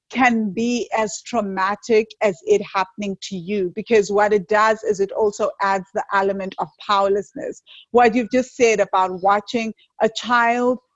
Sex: female